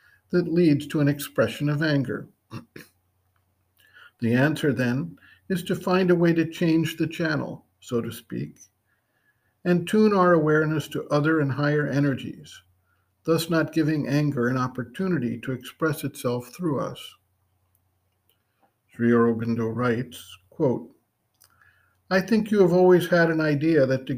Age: 50-69